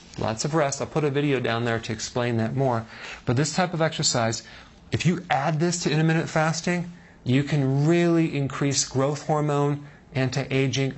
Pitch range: 120-155 Hz